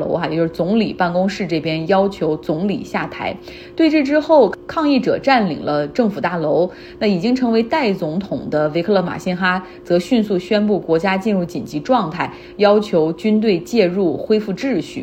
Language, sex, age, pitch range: Chinese, female, 30-49, 165-220 Hz